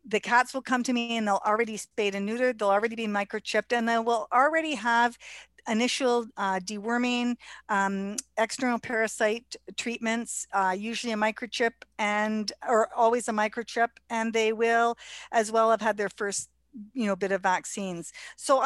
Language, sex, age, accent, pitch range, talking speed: English, female, 50-69, American, 210-245 Hz, 165 wpm